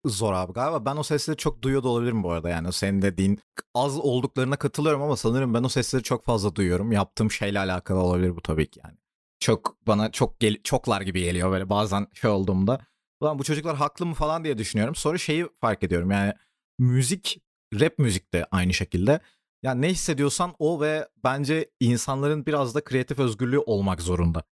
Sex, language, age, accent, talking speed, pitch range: male, Turkish, 40-59, native, 185 wpm, 110-150 Hz